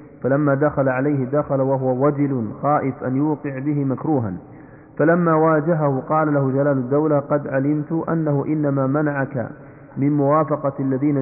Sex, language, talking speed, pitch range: male, Arabic, 135 wpm, 130-150 Hz